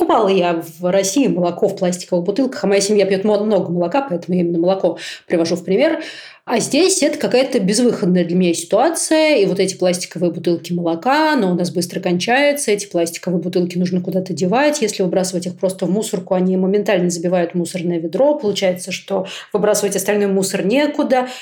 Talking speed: 175 wpm